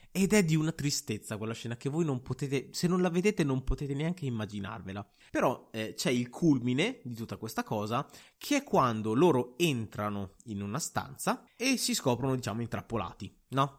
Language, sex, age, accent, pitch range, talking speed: Italian, male, 30-49, native, 120-180 Hz, 185 wpm